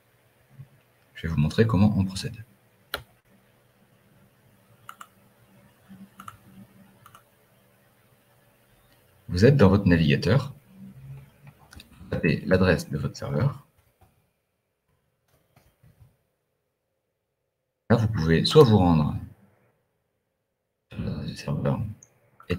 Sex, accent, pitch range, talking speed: male, French, 75-120 Hz, 75 wpm